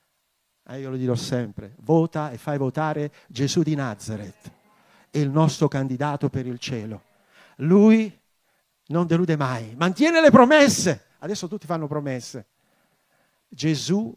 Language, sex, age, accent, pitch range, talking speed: Italian, male, 50-69, native, 140-225 Hz, 125 wpm